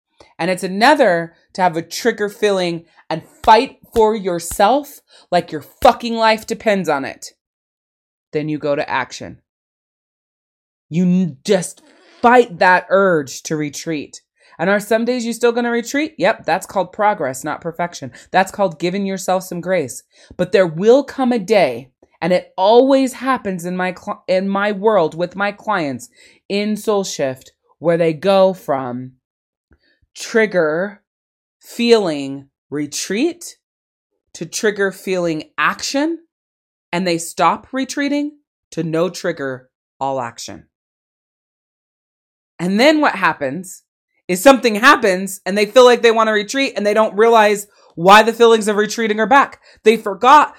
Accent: American